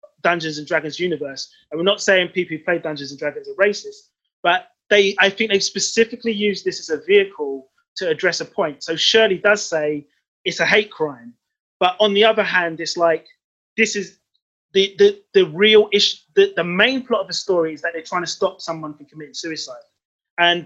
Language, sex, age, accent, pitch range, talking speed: English, male, 20-39, British, 165-215 Hz, 205 wpm